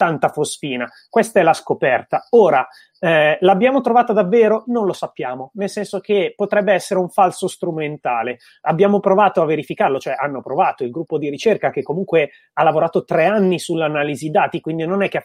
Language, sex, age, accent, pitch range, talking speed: Italian, male, 30-49, native, 135-195 Hz, 180 wpm